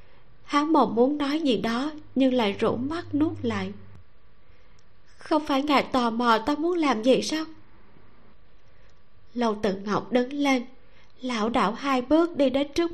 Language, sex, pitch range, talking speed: Vietnamese, female, 225-295 Hz, 160 wpm